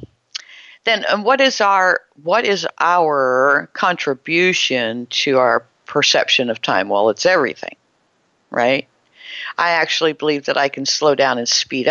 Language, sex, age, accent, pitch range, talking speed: English, female, 50-69, American, 145-185 Hz, 125 wpm